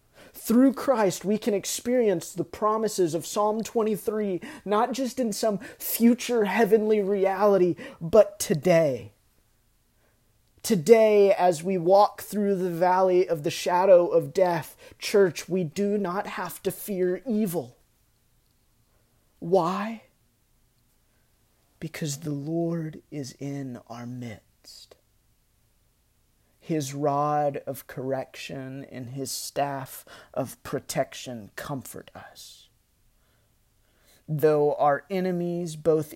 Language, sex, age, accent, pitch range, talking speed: English, male, 30-49, American, 120-190 Hz, 105 wpm